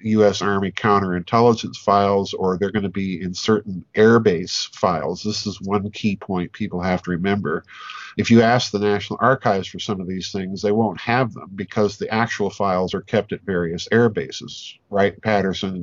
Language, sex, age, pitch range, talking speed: English, male, 50-69, 95-110 Hz, 180 wpm